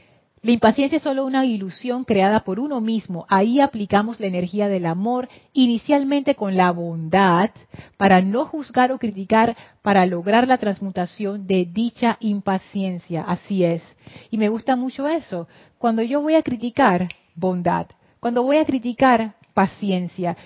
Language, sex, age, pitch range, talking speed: Spanish, female, 40-59, 185-235 Hz, 145 wpm